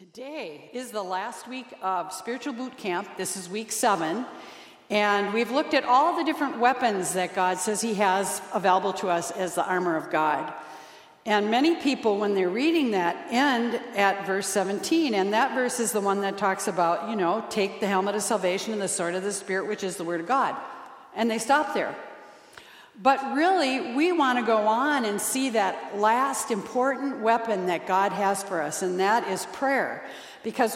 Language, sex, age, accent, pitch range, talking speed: English, female, 60-79, American, 190-255 Hz, 195 wpm